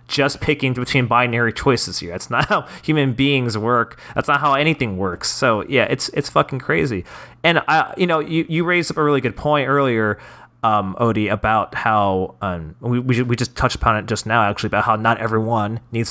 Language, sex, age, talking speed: English, male, 30-49, 210 wpm